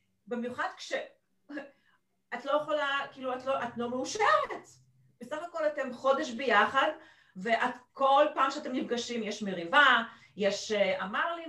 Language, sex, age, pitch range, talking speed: Hebrew, female, 40-59, 210-290 Hz, 130 wpm